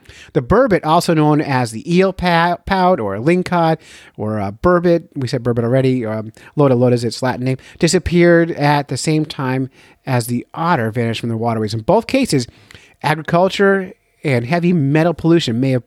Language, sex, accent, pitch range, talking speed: English, male, American, 120-160 Hz, 175 wpm